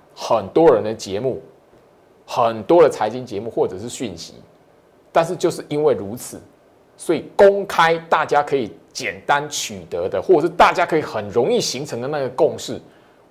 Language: Chinese